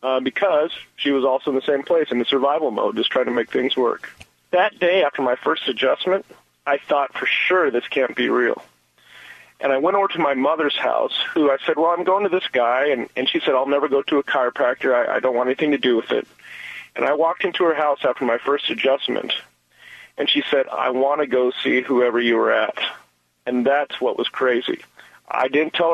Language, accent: English, American